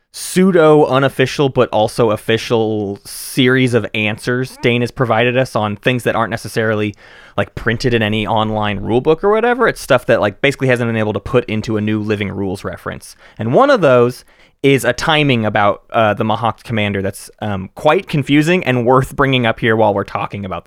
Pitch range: 110-145 Hz